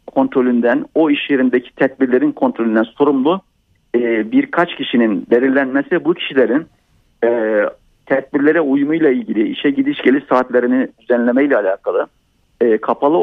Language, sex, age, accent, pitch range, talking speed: Turkish, male, 50-69, native, 125-170 Hz, 105 wpm